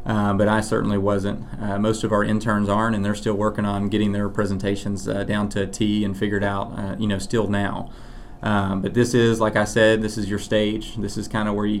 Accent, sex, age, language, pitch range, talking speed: American, male, 30-49, English, 100-110 Hz, 250 wpm